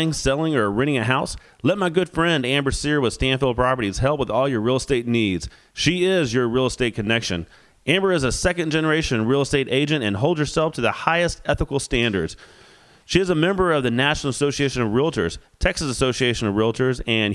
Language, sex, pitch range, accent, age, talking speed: English, male, 115-150 Hz, American, 30-49, 200 wpm